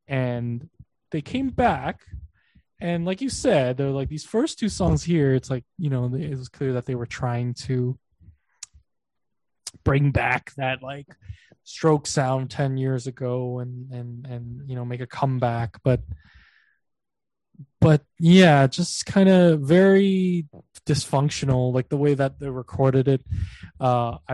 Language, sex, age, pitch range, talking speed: English, male, 20-39, 125-150 Hz, 150 wpm